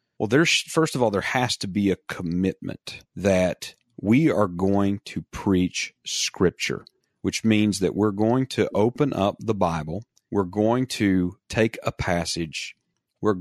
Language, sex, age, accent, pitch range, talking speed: English, male, 40-59, American, 90-110 Hz, 155 wpm